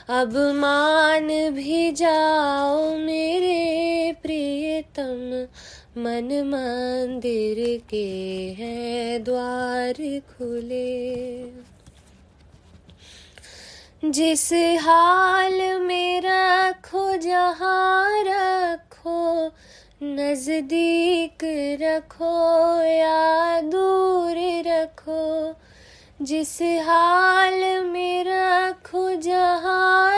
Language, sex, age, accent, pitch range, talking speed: Hindi, female, 20-39, native, 290-355 Hz, 55 wpm